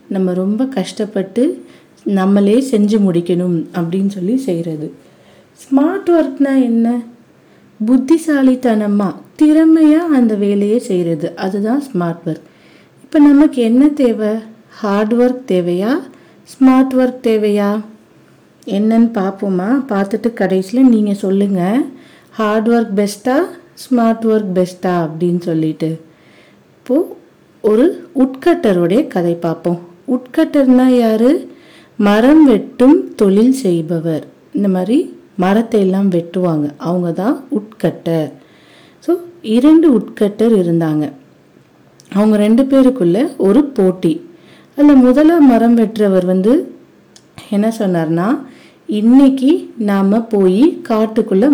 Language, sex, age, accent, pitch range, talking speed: Tamil, female, 50-69, native, 190-265 Hz, 95 wpm